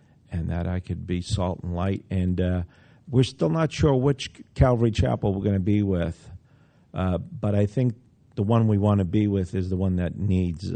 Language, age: English, 50-69